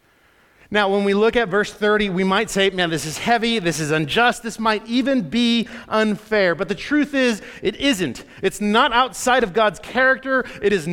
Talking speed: 200 wpm